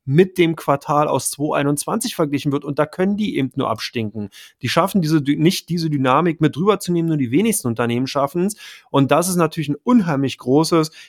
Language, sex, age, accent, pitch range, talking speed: German, male, 30-49, German, 135-165 Hz, 200 wpm